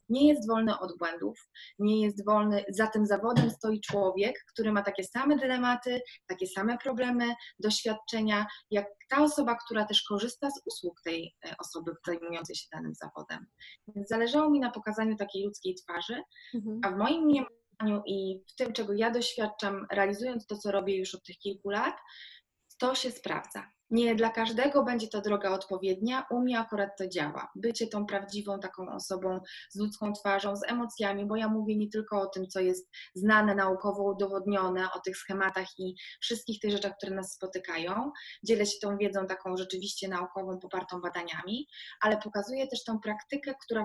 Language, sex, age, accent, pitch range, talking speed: Polish, female, 20-39, native, 195-230 Hz, 170 wpm